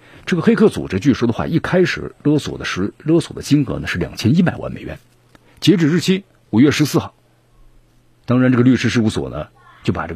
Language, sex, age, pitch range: Chinese, male, 50-69, 105-140 Hz